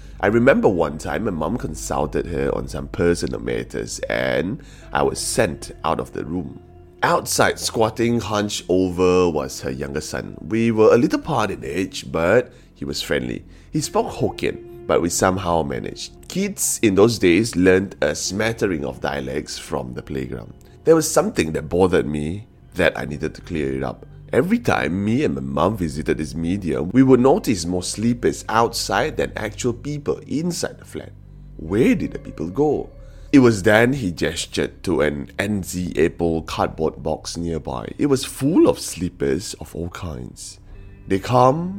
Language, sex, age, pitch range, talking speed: English, male, 30-49, 75-105 Hz, 170 wpm